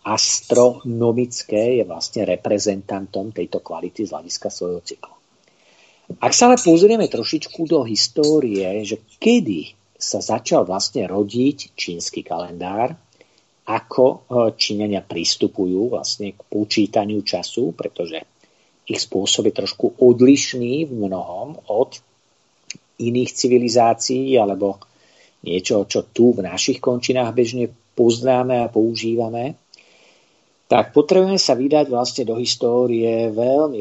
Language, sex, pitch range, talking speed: Slovak, male, 105-125 Hz, 110 wpm